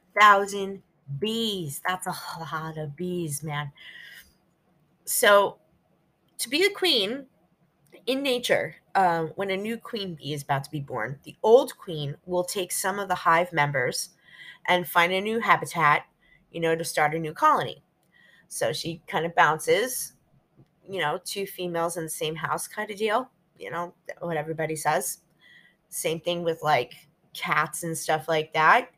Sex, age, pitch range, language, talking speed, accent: female, 30-49, 160-200 Hz, English, 160 wpm, American